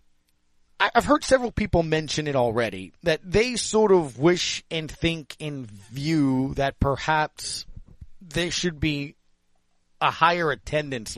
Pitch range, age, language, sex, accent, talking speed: 120-155 Hz, 30-49, English, male, American, 130 wpm